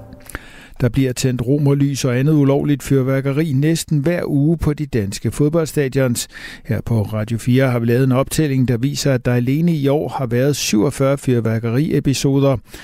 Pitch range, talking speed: 120-145 Hz, 165 wpm